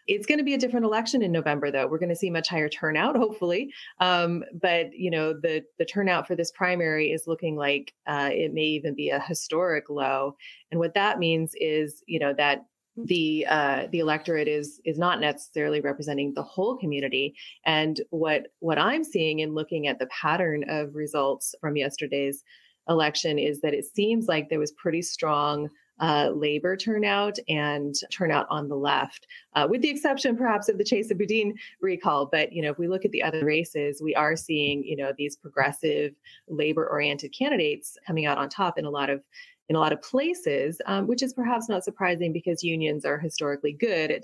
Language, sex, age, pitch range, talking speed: English, female, 30-49, 145-190 Hz, 195 wpm